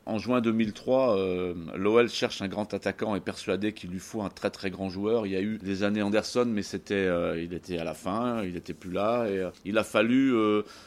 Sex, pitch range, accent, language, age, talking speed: male, 100-120 Hz, French, French, 40-59, 250 wpm